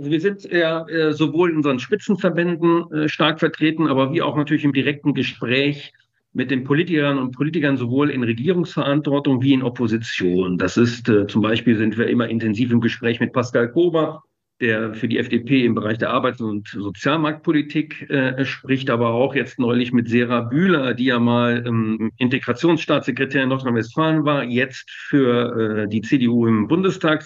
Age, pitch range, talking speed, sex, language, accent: 50-69, 120-155 Hz, 155 wpm, male, German, German